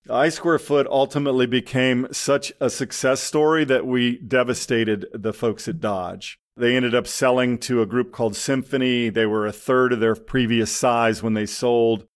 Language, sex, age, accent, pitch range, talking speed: English, male, 40-59, American, 110-135 Hz, 180 wpm